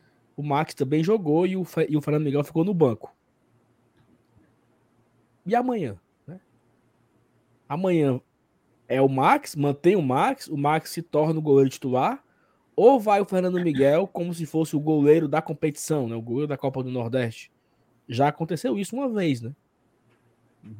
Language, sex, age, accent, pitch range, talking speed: Portuguese, male, 20-39, Brazilian, 130-180 Hz, 155 wpm